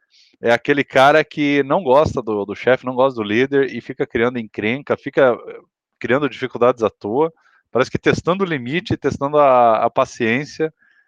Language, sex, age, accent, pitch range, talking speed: Portuguese, male, 20-39, Brazilian, 115-145 Hz, 170 wpm